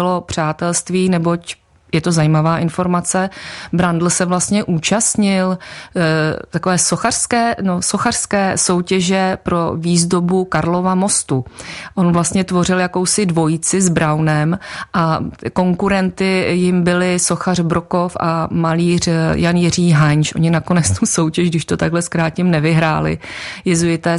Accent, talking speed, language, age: native, 120 wpm, Czech, 30-49